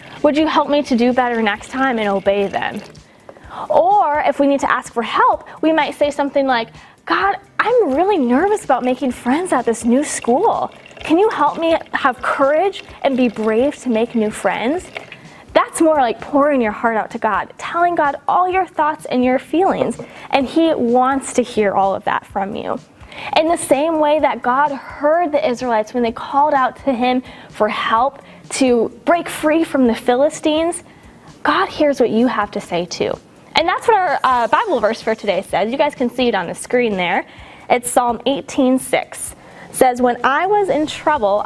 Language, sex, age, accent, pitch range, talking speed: English, female, 10-29, American, 240-315 Hz, 195 wpm